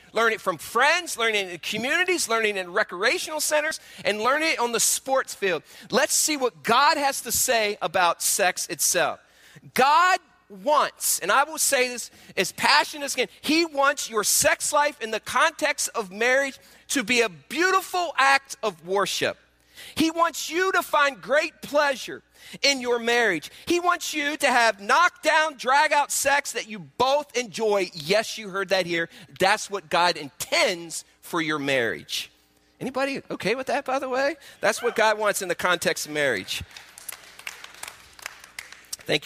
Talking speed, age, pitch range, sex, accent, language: 170 wpm, 40-59, 185-295 Hz, male, American, English